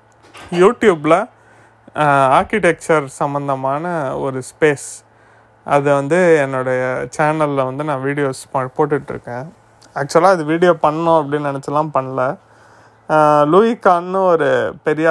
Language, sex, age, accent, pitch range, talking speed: Tamil, male, 30-49, native, 135-160 Hz, 100 wpm